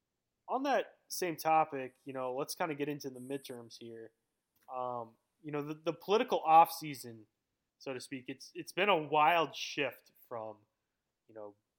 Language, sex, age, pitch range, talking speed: English, male, 20-39, 120-145 Hz, 170 wpm